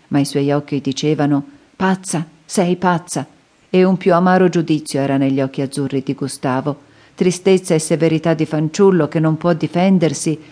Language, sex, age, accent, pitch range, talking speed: Italian, female, 50-69, native, 145-180 Hz, 160 wpm